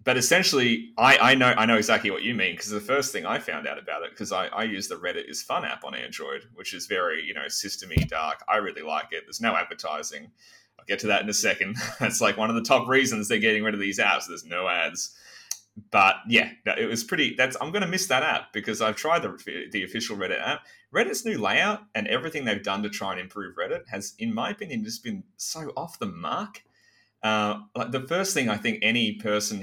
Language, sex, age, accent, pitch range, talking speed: English, male, 30-49, Australian, 105-145 Hz, 240 wpm